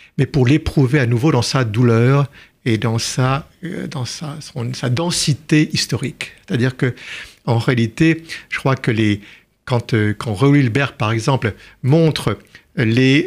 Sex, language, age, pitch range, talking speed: male, French, 50-69, 120-150 Hz, 150 wpm